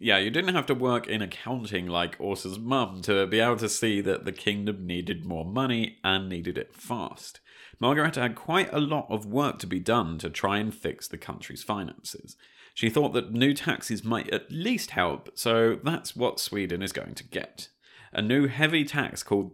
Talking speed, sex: 200 wpm, male